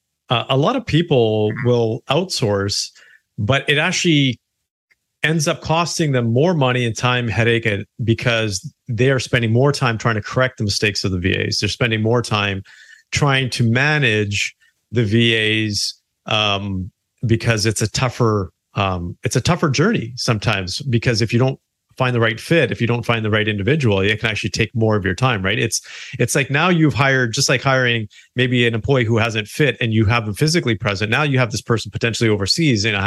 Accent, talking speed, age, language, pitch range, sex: American, 190 wpm, 40-59, English, 110-140 Hz, male